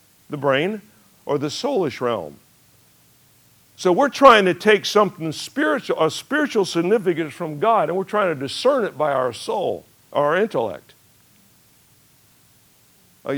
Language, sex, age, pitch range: English, male, 60-79, 160-225 Hz